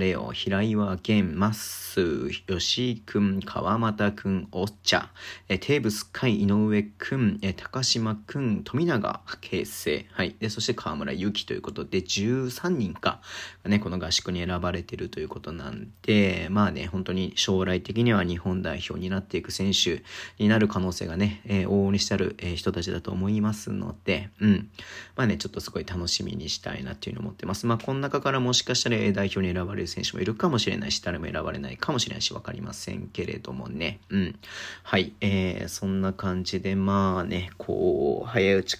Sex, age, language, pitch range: male, 40-59, Japanese, 95-110 Hz